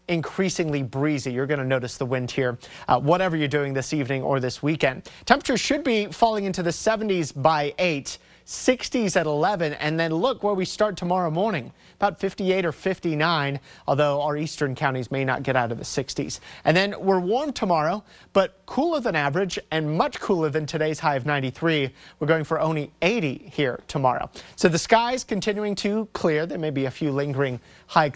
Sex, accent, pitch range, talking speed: male, American, 140-180 Hz, 190 wpm